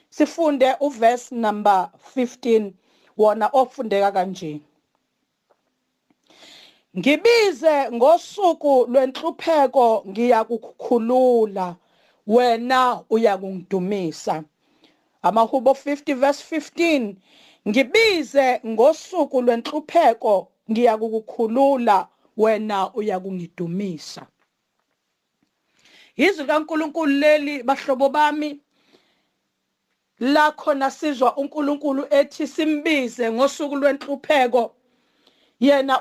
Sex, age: female, 40-59